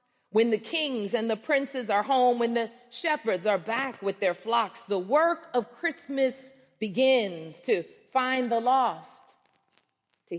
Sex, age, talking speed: female, 40-59, 150 wpm